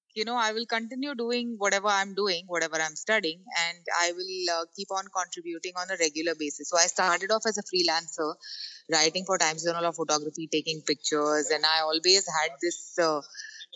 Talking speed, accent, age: 190 wpm, Indian, 30-49